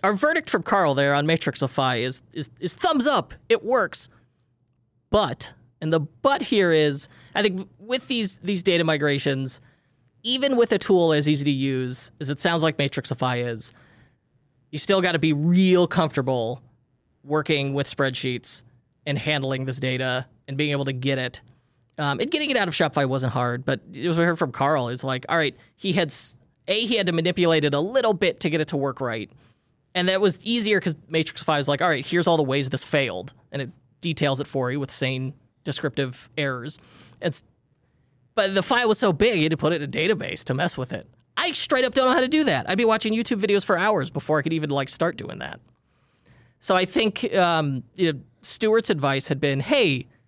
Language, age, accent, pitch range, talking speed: English, 20-39, American, 130-180 Hz, 210 wpm